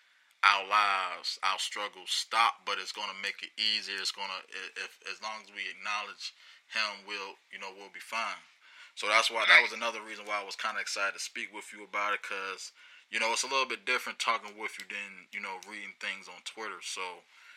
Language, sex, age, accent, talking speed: English, male, 20-39, American, 220 wpm